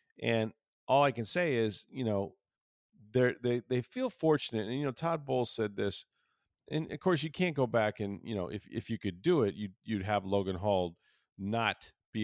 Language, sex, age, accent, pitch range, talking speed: English, male, 40-59, American, 95-120 Hz, 205 wpm